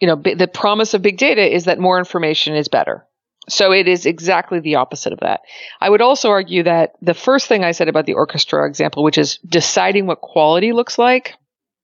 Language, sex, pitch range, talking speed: English, female, 165-215 Hz, 215 wpm